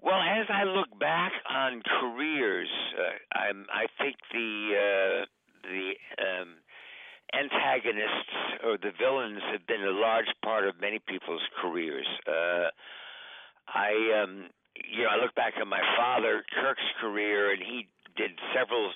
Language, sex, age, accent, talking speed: English, male, 60-79, American, 140 wpm